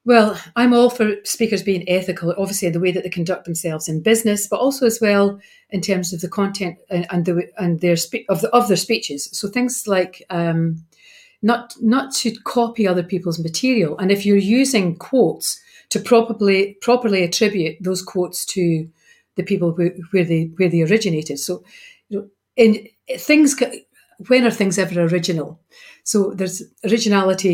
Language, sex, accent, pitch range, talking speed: English, female, British, 180-225 Hz, 180 wpm